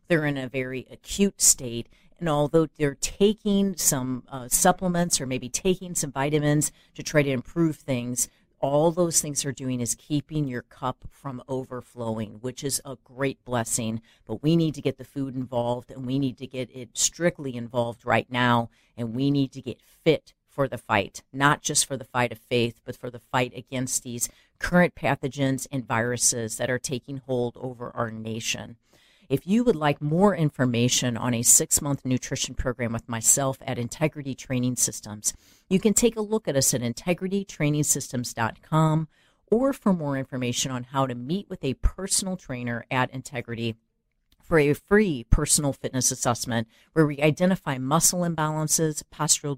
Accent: American